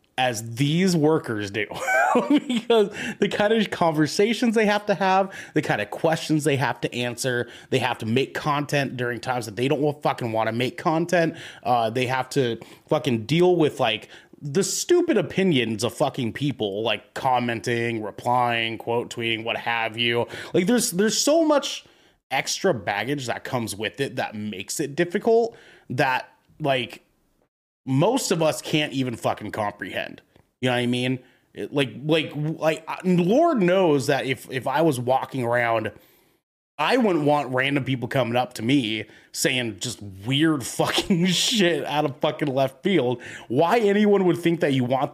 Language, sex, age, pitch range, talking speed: English, male, 30-49, 120-170 Hz, 165 wpm